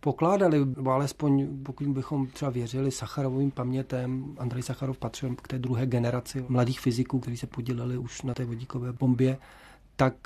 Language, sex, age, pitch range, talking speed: Czech, male, 40-59, 130-145 Hz, 150 wpm